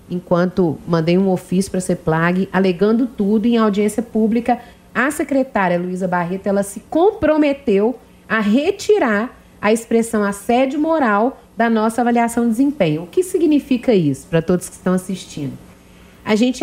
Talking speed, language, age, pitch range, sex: 150 wpm, Portuguese, 40-59, 195-270 Hz, female